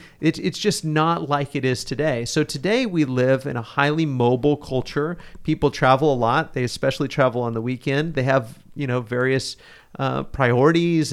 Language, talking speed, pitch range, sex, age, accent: English, 180 wpm, 130-160 Hz, male, 40-59, American